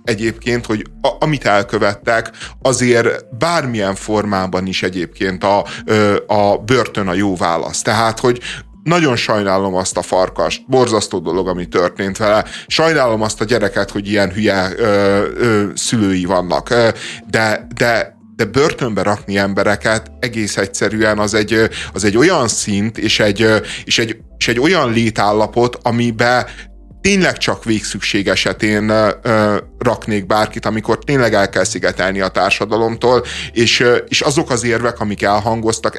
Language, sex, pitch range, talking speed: Hungarian, male, 105-125 Hz, 130 wpm